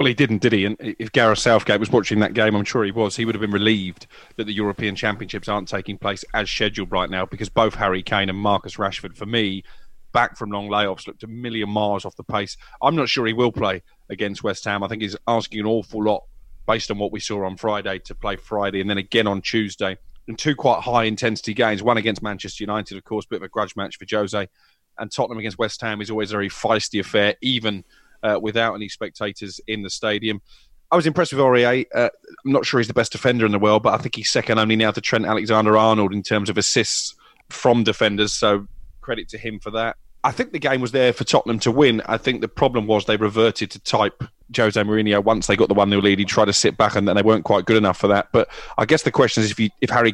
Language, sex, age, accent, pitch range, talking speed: English, male, 30-49, British, 100-115 Hz, 250 wpm